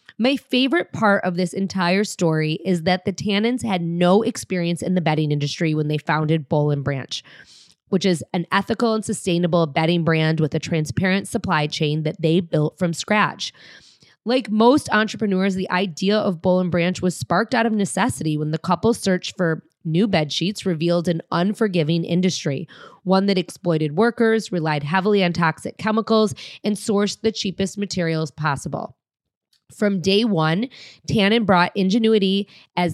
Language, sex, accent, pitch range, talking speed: English, female, American, 165-215 Hz, 160 wpm